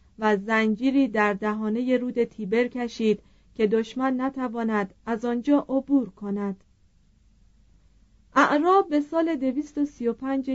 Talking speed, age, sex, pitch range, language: 100 wpm, 40-59, female, 210-265 Hz, Persian